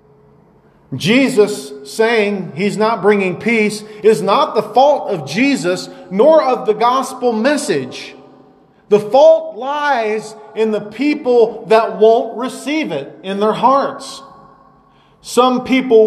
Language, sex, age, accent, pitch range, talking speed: English, male, 40-59, American, 180-250 Hz, 120 wpm